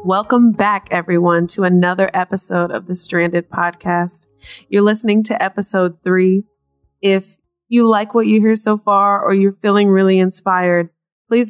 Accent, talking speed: American, 150 wpm